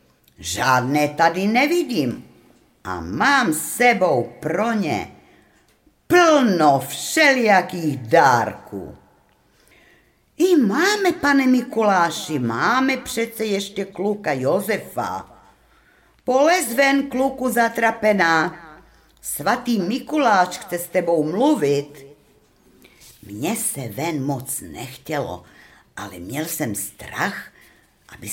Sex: female